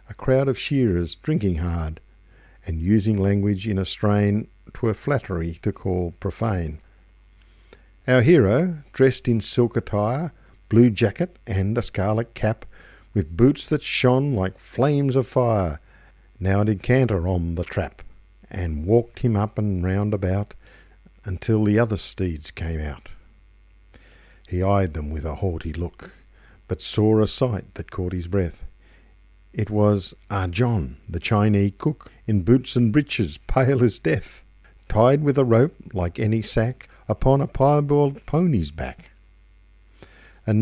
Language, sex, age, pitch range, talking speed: English, male, 50-69, 95-120 Hz, 145 wpm